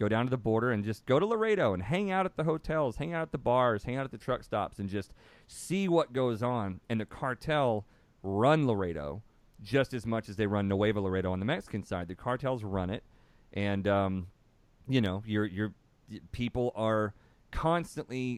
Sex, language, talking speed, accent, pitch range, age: male, English, 200 wpm, American, 95-125 Hz, 40-59